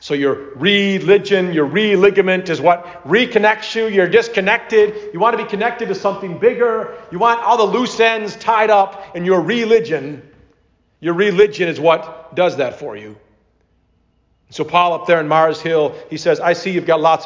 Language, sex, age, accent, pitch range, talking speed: English, male, 40-59, American, 155-210 Hz, 180 wpm